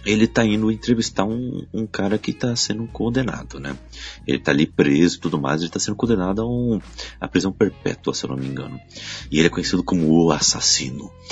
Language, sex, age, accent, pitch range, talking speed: Portuguese, male, 30-49, Brazilian, 80-110 Hz, 205 wpm